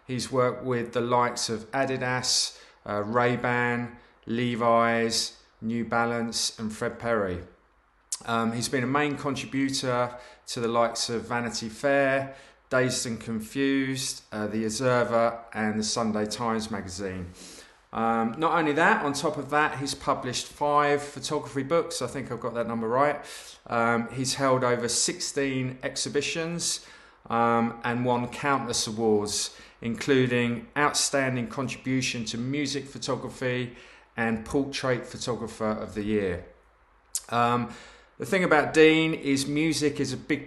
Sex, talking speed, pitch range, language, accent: male, 135 wpm, 115-140 Hz, English, British